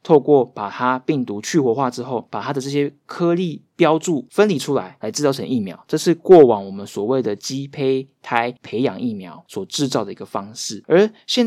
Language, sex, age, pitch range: Chinese, male, 20-39, 120-155 Hz